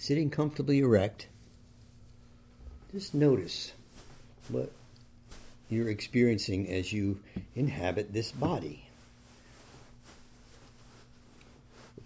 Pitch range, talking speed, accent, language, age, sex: 105-120 Hz, 70 wpm, American, English, 50-69, male